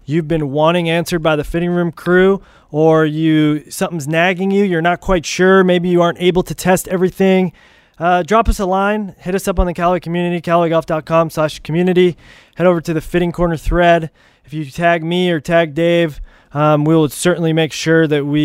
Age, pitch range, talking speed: 20-39, 155-180 Hz, 205 wpm